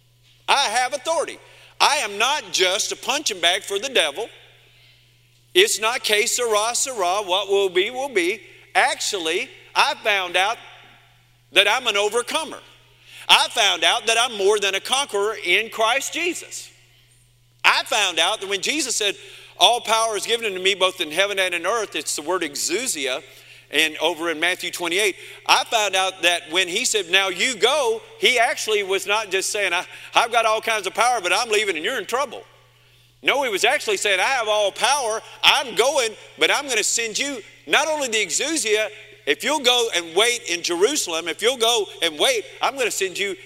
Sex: male